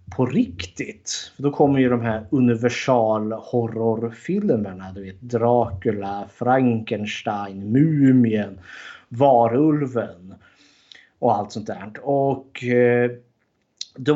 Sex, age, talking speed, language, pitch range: male, 30-49, 90 wpm, Swedish, 110-130 Hz